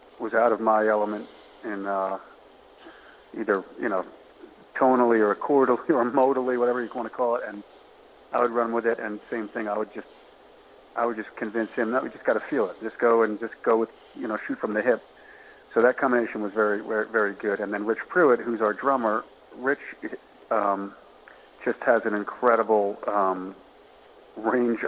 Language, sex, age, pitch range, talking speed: English, male, 40-59, 105-120 Hz, 190 wpm